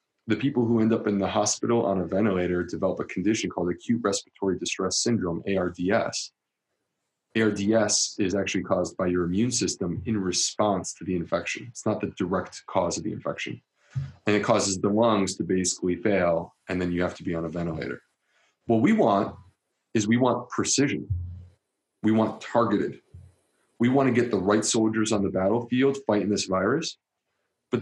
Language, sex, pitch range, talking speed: English, male, 95-115 Hz, 175 wpm